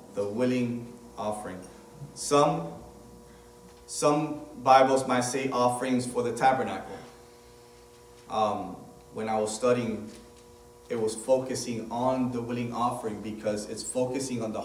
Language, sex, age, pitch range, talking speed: English, male, 30-49, 110-125 Hz, 120 wpm